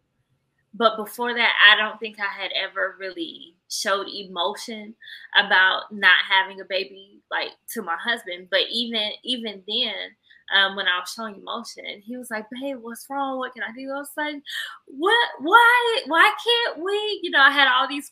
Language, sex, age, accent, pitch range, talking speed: English, female, 20-39, American, 200-275 Hz, 180 wpm